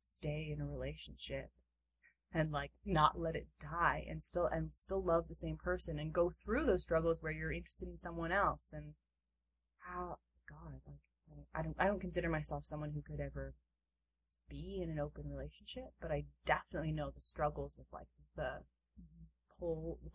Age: 20-39